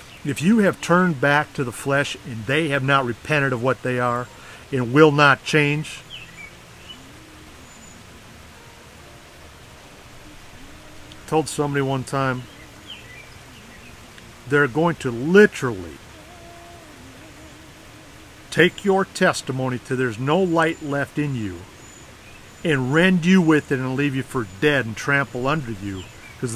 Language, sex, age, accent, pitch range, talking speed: English, male, 50-69, American, 115-155 Hz, 125 wpm